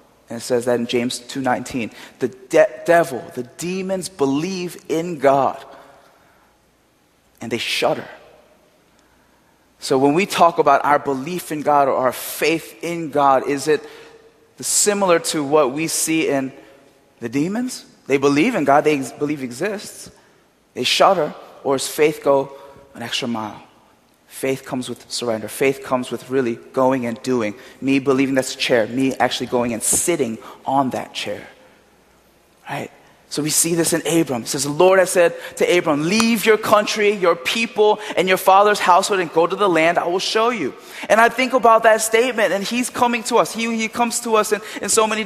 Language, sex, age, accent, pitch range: Korean, male, 20-39, American, 140-215 Hz